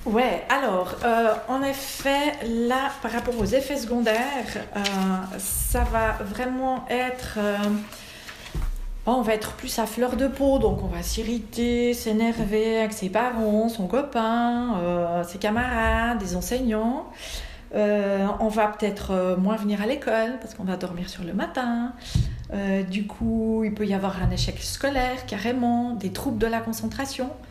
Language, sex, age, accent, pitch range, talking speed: French, female, 40-59, French, 195-240 Hz, 155 wpm